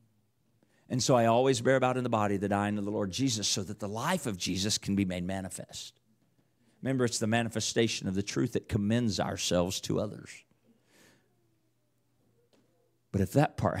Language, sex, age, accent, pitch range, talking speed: English, male, 50-69, American, 100-130 Hz, 180 wpm